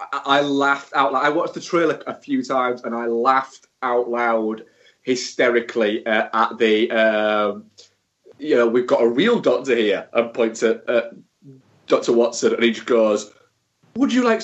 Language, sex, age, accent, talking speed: English, male, 20-39, British, 175 wpm